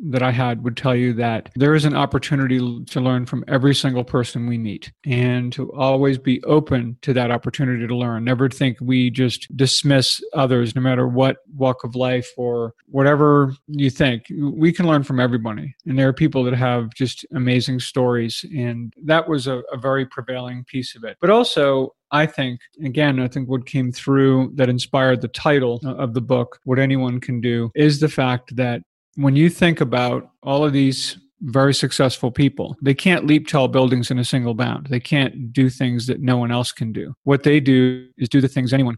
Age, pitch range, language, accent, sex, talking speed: 40-59, 125-140 Hz, English, American, male, 200 wpm